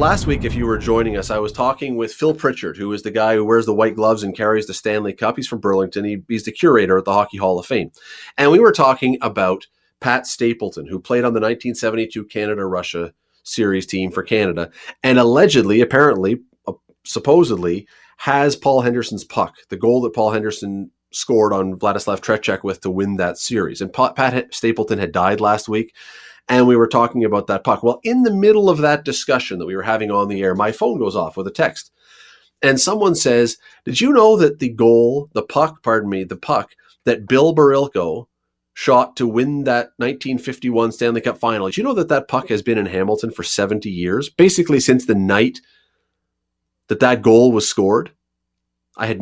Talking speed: 200 wpm